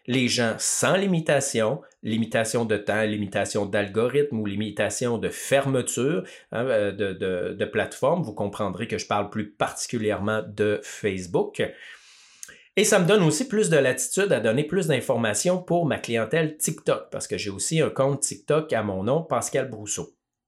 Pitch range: 110-155 Hz